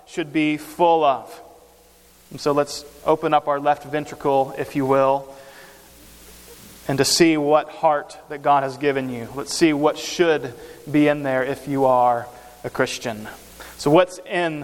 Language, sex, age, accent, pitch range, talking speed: English, male, 30-49, American, 140-190 Hz, 165 wpm